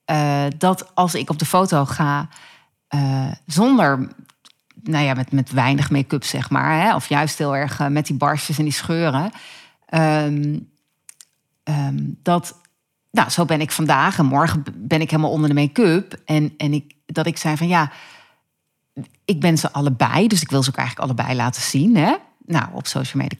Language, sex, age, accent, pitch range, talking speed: Dutch, female, 40-59, Dutch, 140-175 Hz, 185 wpm